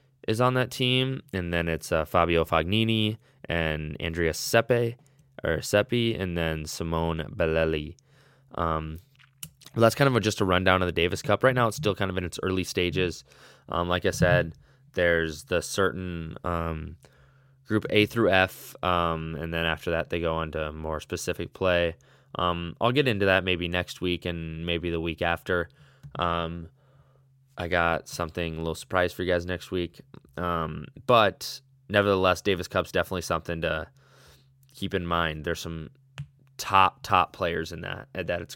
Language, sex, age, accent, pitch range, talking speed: English, male, 20-39, American, 85-115 Hz, 170 wpm